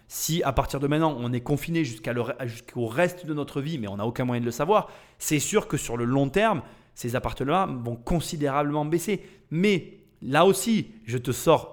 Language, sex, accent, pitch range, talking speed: French, male, French, 120-165 Hz, 200 wpm